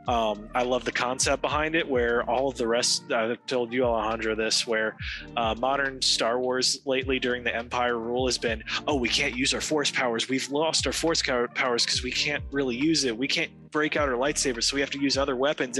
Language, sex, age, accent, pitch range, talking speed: English, male, 20-39, American, 115-135 Hz, 230 wpm